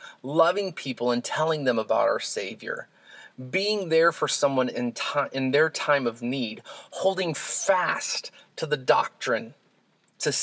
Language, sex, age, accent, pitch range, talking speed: English, male, 30-49, American, 130-165 Hz, 145 wpm